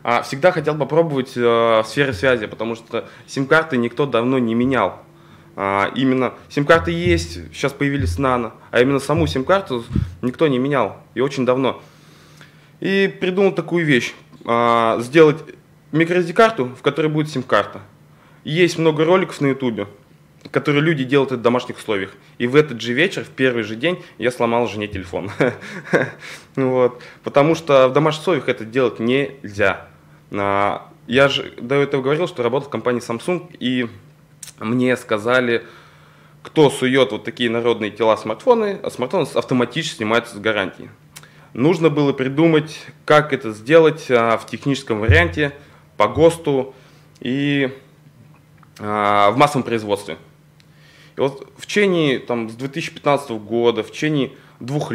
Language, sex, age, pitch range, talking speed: Russian, male, 20-39, 115-150 Hz, 135 wpm